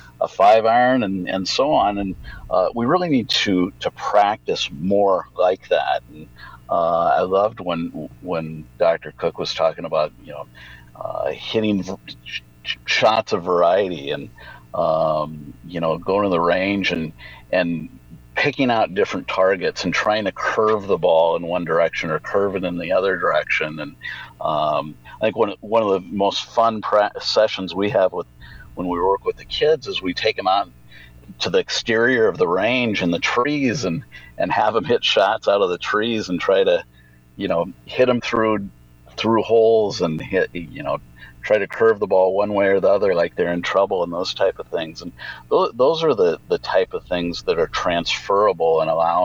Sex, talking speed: male, 195 wpm